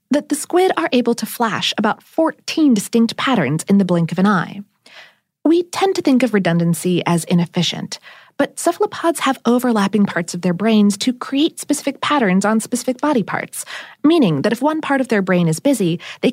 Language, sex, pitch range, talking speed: English, female, 175-275 Hz, 190 wpm